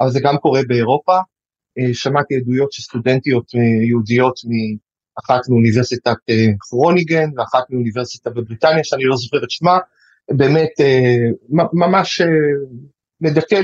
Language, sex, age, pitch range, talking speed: Hebrew, male, 30-49, 125-165 Hz, 105 wpm